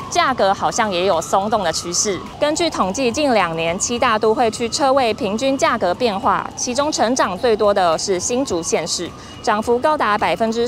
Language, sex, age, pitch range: Chinese, female, 20-39, 190-265 Hz